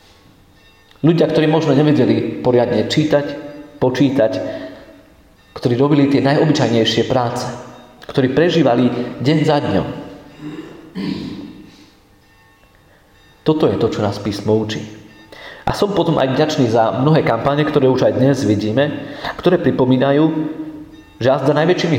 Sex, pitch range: male, 110-145 Hz